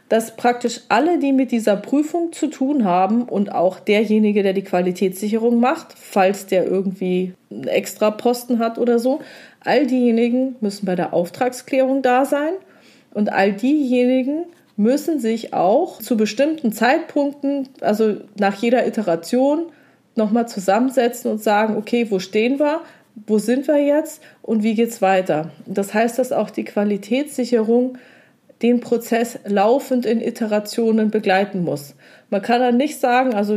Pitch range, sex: 210-265 Hz, female